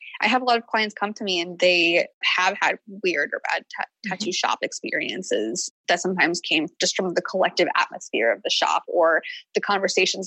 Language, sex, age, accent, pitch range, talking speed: English, female, 20-39, American, 185-260 Hz, 200 wpm